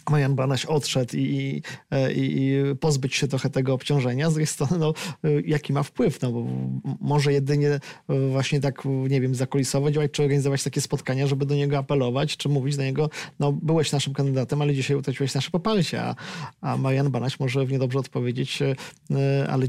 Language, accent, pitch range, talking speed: Polish, native, 135-155 Hz, 170 wpm